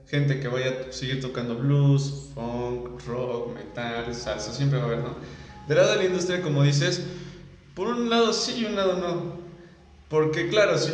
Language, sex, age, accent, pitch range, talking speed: Spanish, male, 20-39, Mexican, 130-155 Hz, 185 wpm